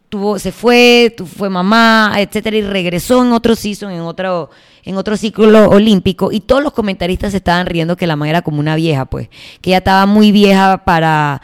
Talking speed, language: 195 wpm, Spanish